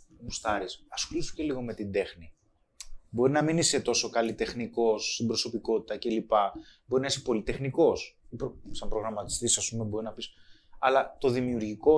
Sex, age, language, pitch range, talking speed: male, 20-39, Greek, 110-135 Hz, 145 wpm